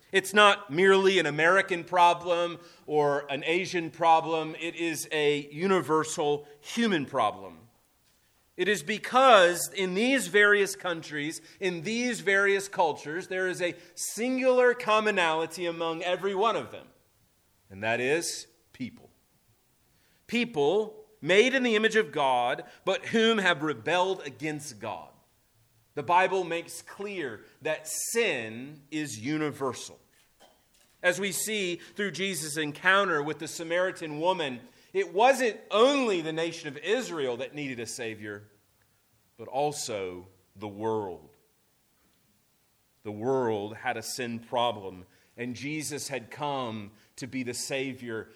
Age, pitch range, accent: 30-49, 120-190 Hz, American